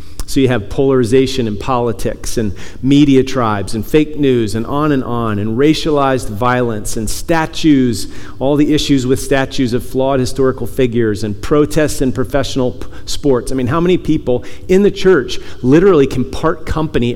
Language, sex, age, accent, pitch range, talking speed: English, male, 40-59, American, 105-140 Hz, 165 wpm